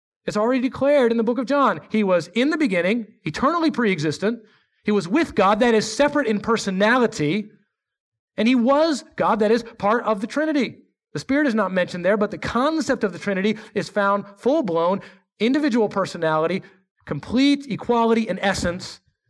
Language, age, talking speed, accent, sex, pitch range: English, 30-49, 170 wpm, American, male, 150-225 Hz